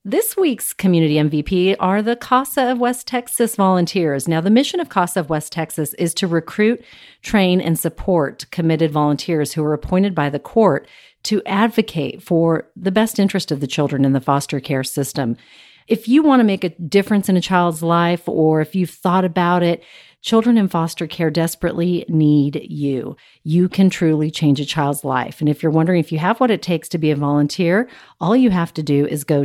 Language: English